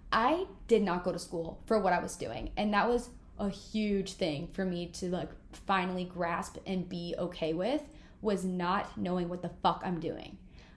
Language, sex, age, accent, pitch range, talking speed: English, female, 20-39, American, 185-225 Hz, 195 wpm